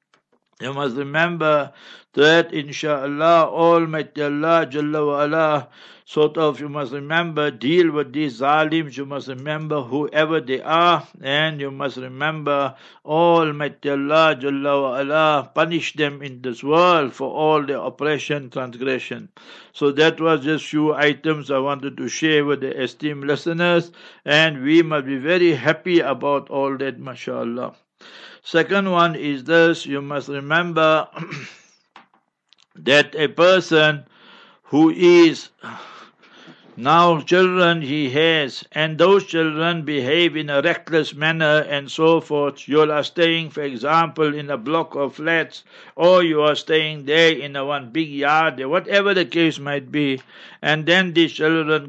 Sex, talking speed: male, 145 wpm